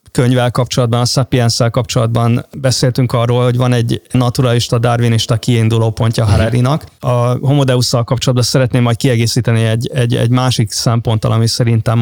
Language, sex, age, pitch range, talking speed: Hungarian, male, 30-49, 115-130 Hz, 140 wpm